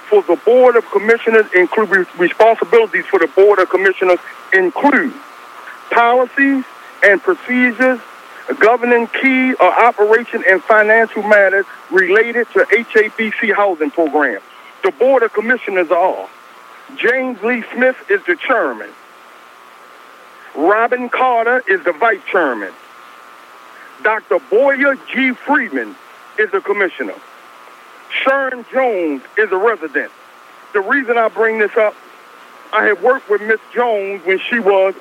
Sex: male